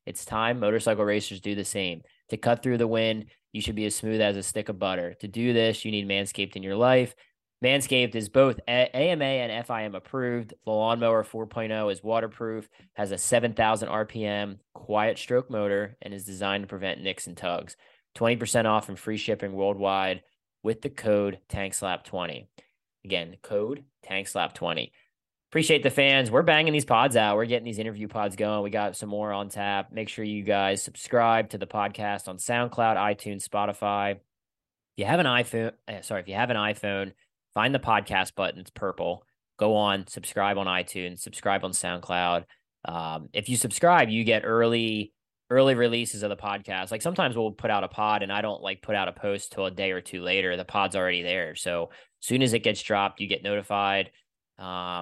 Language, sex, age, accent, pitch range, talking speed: English, male, 20-39, American, 100-115 Hz, 190 wpm